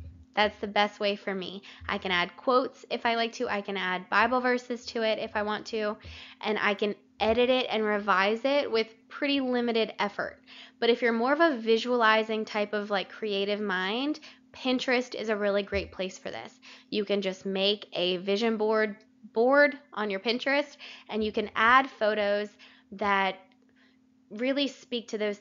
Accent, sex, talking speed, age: American, female, 185 wpm, 10-29